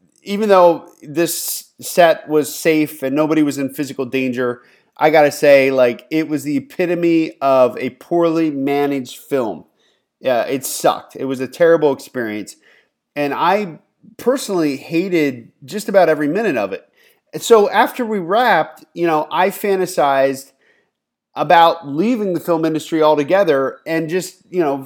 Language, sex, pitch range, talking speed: English, male, 150-205 Hz, 145 wpm